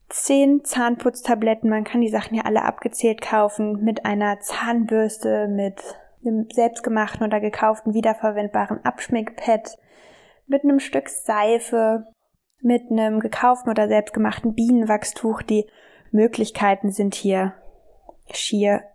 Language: German